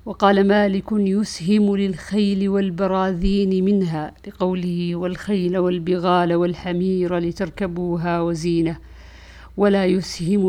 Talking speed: 80 wpm